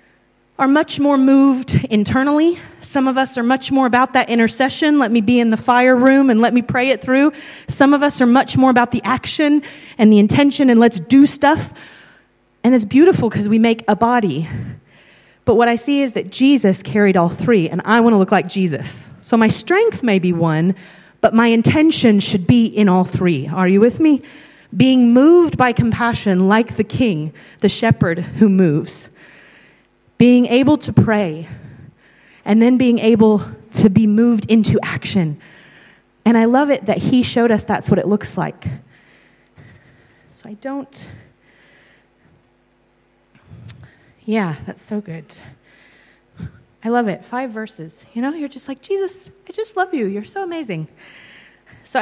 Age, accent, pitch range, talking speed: 30-49, American, 190-260 Hz, 170 wpm